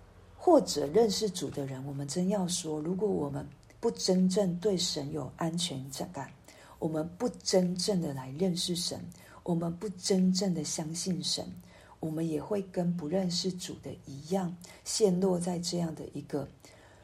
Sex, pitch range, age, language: female, 150-185 Hz, 50-69, Chinese